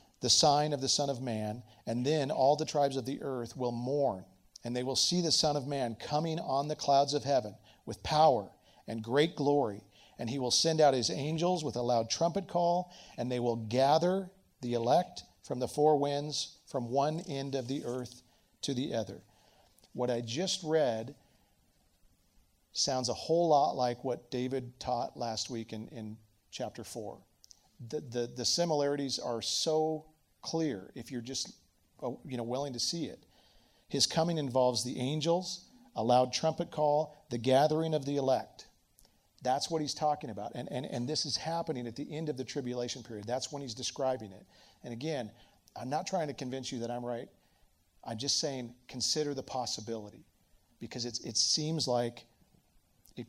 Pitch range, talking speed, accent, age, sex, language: 120-150 Hz, 180 wpm, American, 40-59, male, English